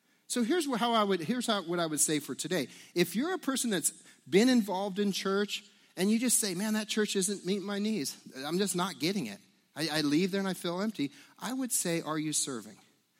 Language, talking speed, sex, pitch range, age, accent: English, 235 wpm, male, 135-200 Hz, 40-59, American